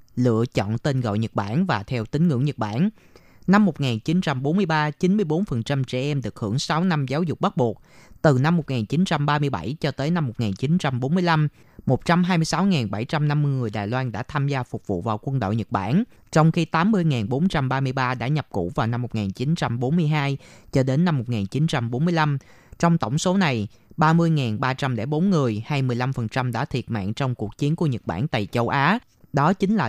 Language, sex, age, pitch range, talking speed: Vietnamese, female, 20-39, 120-165 Hz, 165 wpm